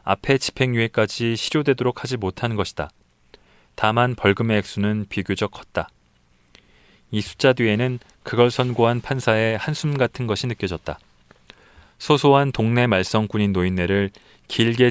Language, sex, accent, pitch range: Korean, male, native, 100-125 Hz